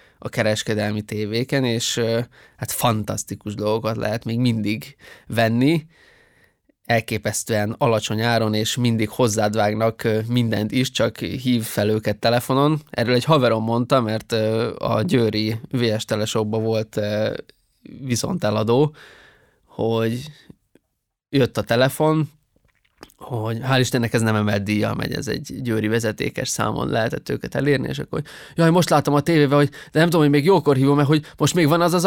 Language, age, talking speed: Hungarian, 20-39, 145 wpm